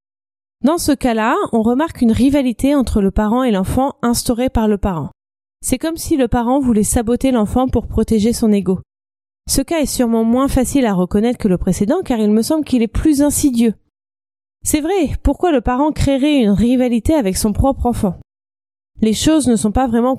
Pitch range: 205-275 Hz